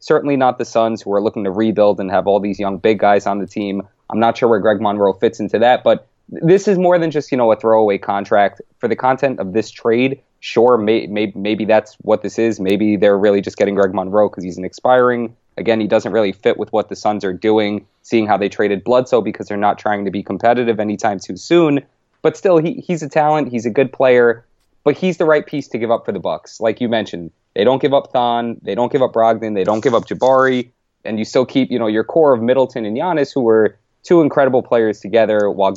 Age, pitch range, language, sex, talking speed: 20-39, 105-130 Hz, English, male, 250 wpm